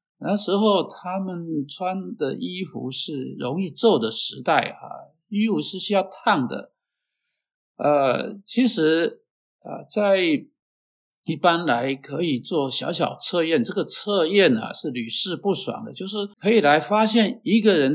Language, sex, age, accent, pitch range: Chinese, male, 60-79, native, 160-230 Hz